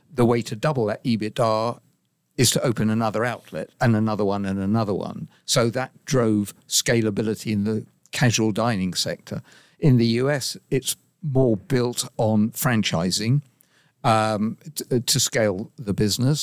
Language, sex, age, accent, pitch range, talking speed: English, male, 50-69, British, 110-130 Hz, 145 wpm